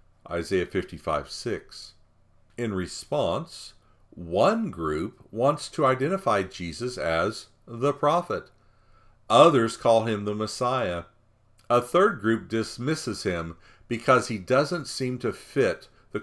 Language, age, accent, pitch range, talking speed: English, 50-69, American, 90-125 Hz, 115 wpm